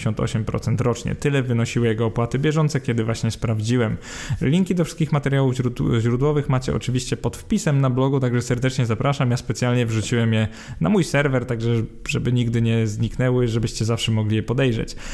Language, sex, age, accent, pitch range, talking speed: Polish, male, 20-39, native, 115-140 Hz, 165 wpm